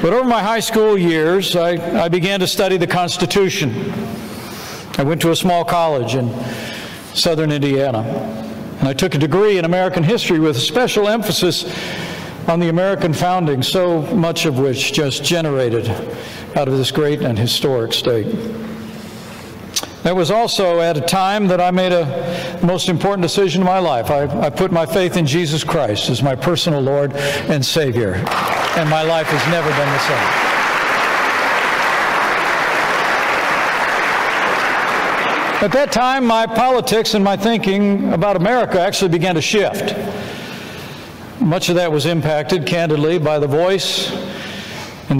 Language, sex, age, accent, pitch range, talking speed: English, male, 60-79, American, 150-185 Hz, 150 wpm